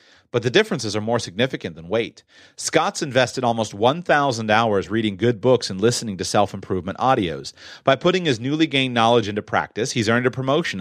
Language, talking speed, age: English, 185 wpm, 30-49